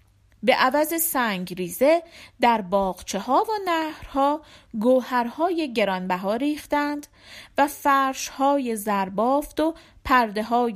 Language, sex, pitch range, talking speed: Persian, female, 195-290 Hz, 95 wpm